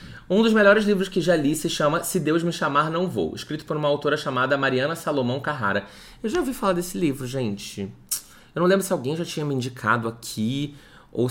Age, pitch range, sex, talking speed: 20-39, 125-160 Hz, male, 220 wpm